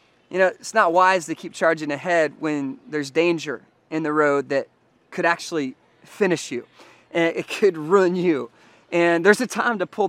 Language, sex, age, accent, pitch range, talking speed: English, male, 20-39, American, 160-205 Hz, 185 wpm